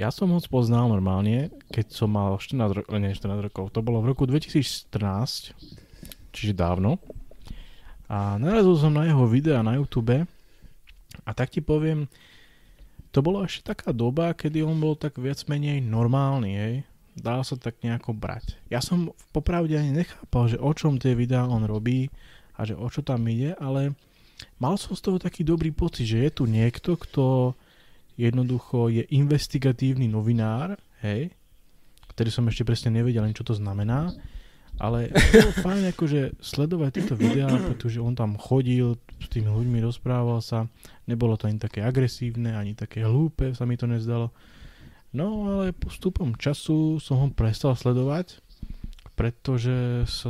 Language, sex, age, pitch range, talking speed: Slovak, male, 20-39, 110-145 Hz, 160 wpm